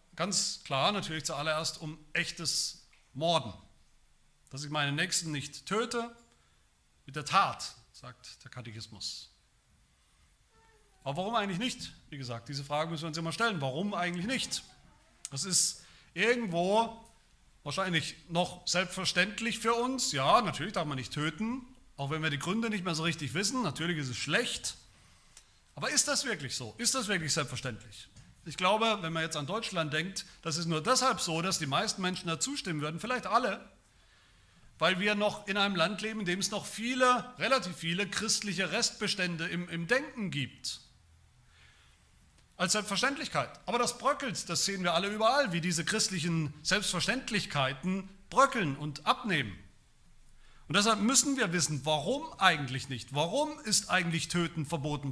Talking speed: 155 wpm